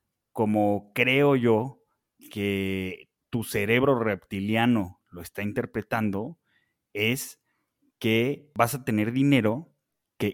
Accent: Mexican